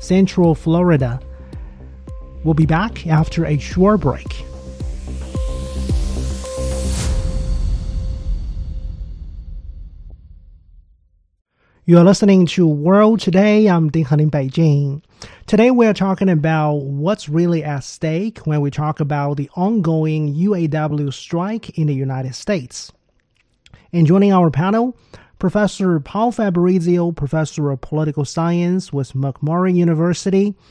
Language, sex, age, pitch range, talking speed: English, male, 30-49, 140-175 Hz, 105 wpm